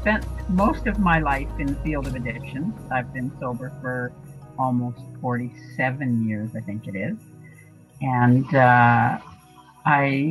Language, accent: English, American